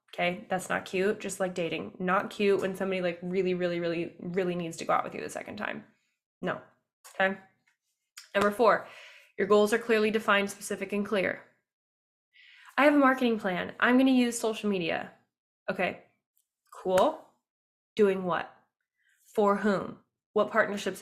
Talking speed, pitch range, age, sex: 160 wpm, 185-220 Hz, 10-29, female